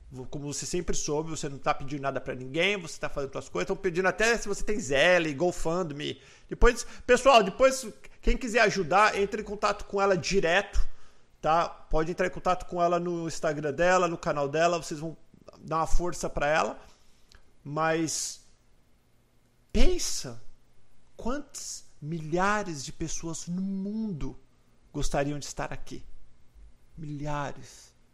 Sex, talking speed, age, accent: male, 150 wpm, 50-69, Brazilian